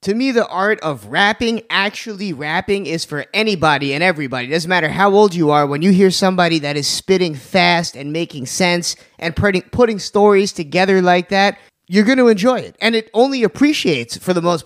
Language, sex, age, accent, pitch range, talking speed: English, male, 20-39, American, 160-210 Hz, 200 wpm